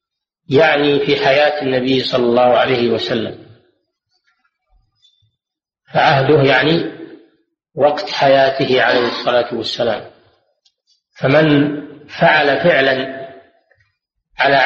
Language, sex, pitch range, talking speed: Arabic, male, 135-185 Hz, 80 wpm